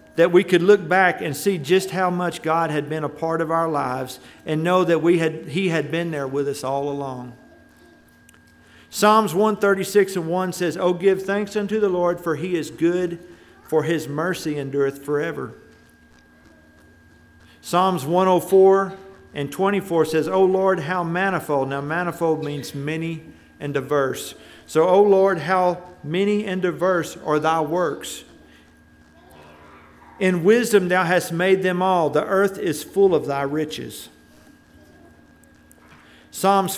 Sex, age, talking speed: male, 50-69, 155 wpm